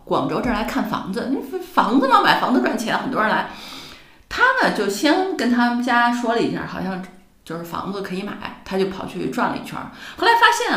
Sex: female